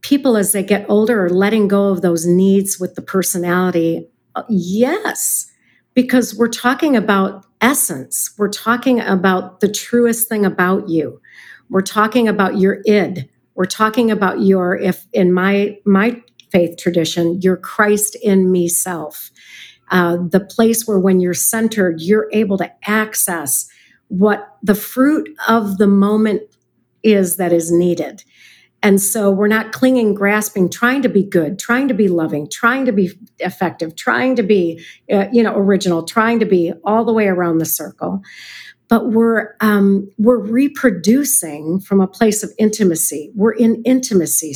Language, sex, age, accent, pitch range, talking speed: English, female, 50-69, American, 185-225 Hz, 155 wpm